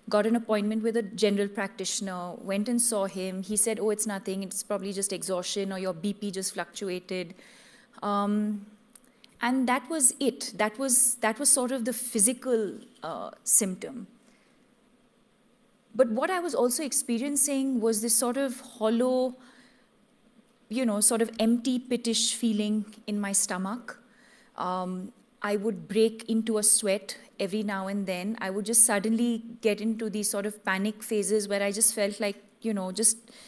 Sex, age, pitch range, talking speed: female, 30-49, 200-240 Hz, 165 wpm